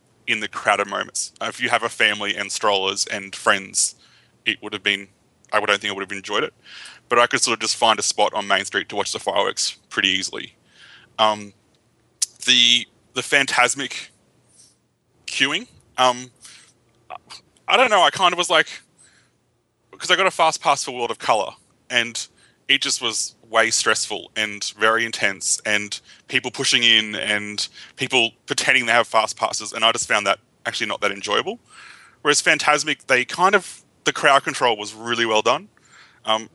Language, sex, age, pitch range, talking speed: English, male, 20-39, 105-125 Hz, 180 wpm